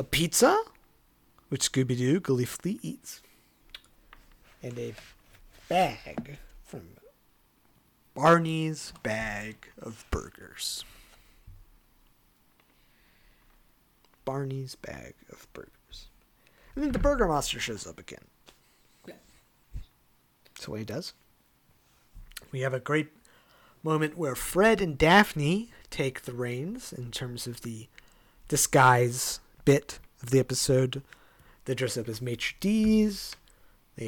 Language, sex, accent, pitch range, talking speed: English, male, American, 115-160 Hz, 100 wpm